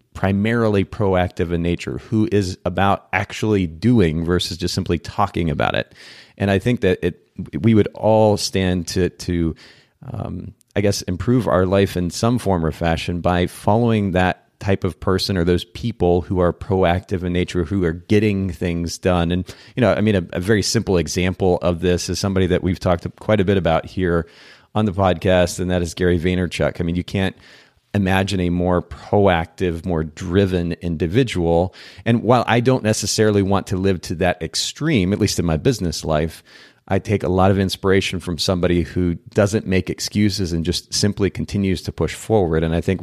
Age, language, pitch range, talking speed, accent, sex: 30-49, English, 85-100 Hz, 190 wpm, American, male